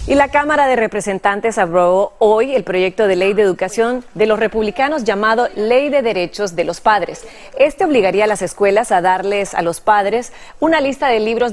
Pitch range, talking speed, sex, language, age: 190-255 Hz, 195 wpm, female, Spanish, 30-49